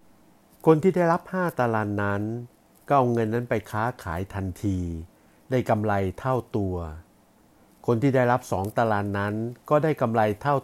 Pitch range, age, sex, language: 100-125 Hz, 60-79, male, Thai